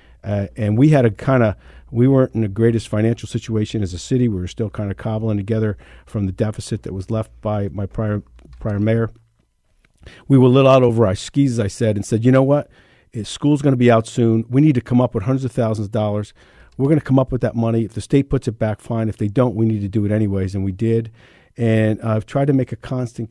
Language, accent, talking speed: English, American, 265 wpm